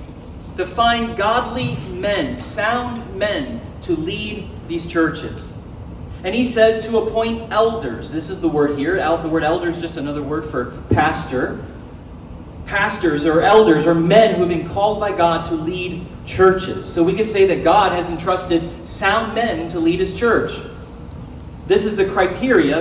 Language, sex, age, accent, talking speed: English, male, 40-59, American, 165 wpm